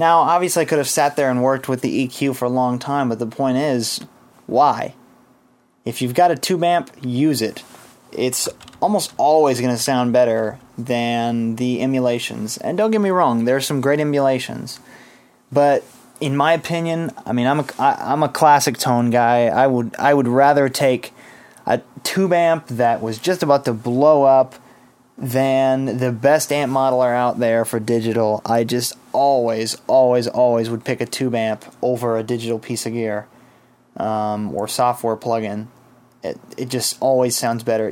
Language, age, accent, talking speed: English, 20-39, American, 175 wpm